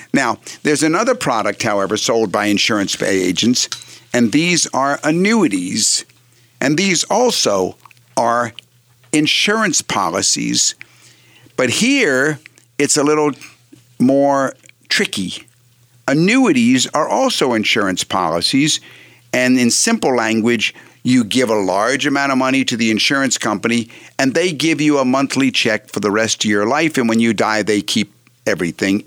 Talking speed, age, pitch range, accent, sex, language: 135 wpm, 50-69, 110-140 Hz, American, male, English